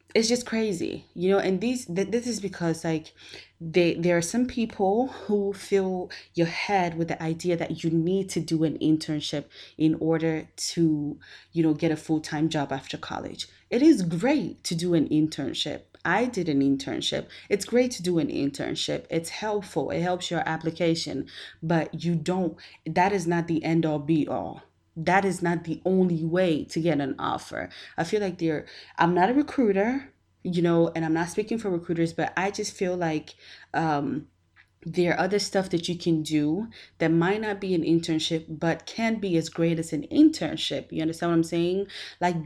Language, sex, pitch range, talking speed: English, female, 160-195 Hz, 190 wpm